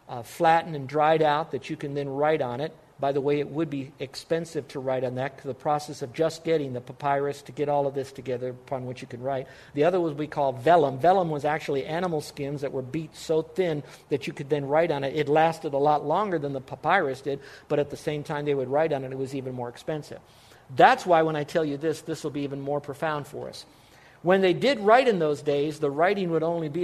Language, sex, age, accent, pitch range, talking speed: English, male, 50-69, American, 140-180 Hz, 260 wpm